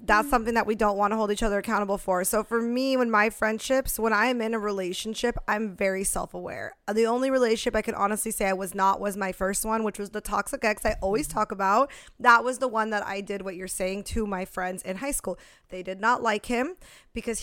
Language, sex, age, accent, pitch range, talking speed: English, female, 20-39, American, 200-235 Hz, 245 wpm